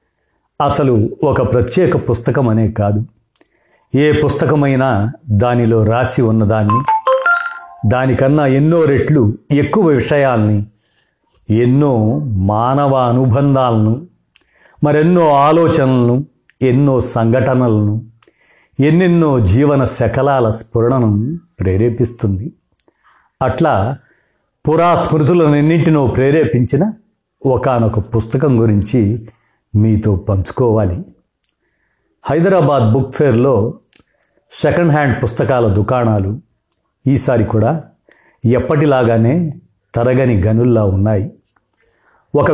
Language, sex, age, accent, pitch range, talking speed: Telugu, male, 50-69, native, 110-145 Hz, 70 wpm